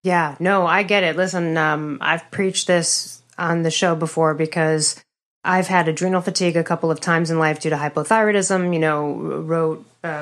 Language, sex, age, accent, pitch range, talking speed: English, female, 30-49, American, 160-195 Hz, 190 wpm